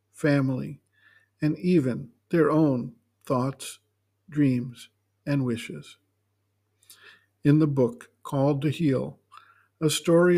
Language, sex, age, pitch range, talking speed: English, male, 50-69, 125-165 Hz, 100 wpm